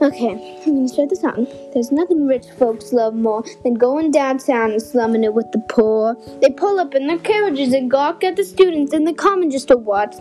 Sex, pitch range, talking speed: female, 260-365 Hz, 230 wpm